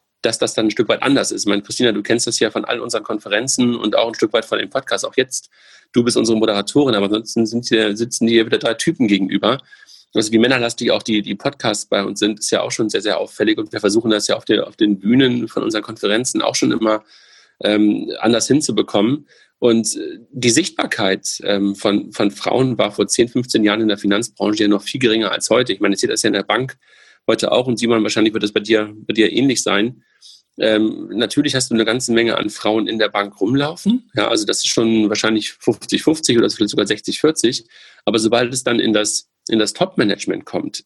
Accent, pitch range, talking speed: German, 105-120 Hz, 230 wpm